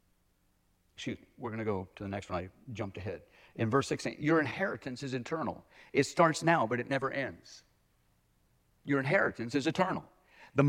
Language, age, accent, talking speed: English, 50-69, American, 180 wpm